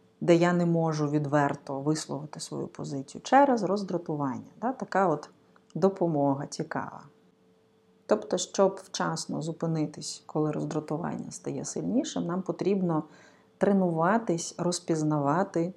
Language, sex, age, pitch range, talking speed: Ukrainian, female, 30-49, 150-175 Hz, 100 wpm